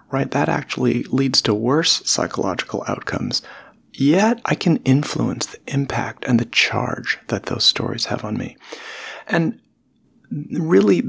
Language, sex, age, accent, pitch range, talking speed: English, male, 40-59, American, 115-150 Hz, 135 wpm